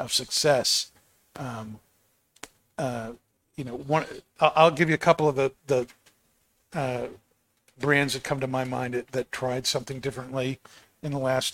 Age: 50-69